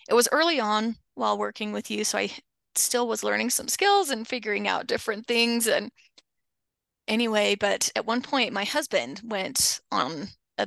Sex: female